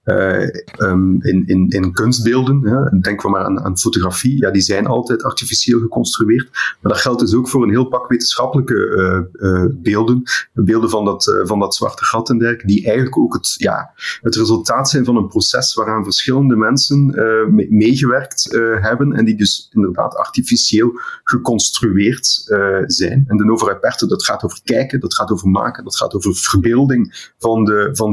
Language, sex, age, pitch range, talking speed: Dutch, male, 30-49, 105-130 Hz, 180 wpm